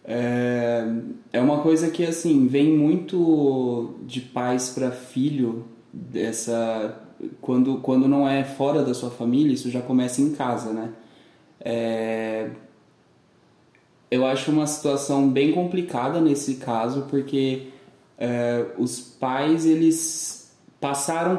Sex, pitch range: male, 125-160 Hz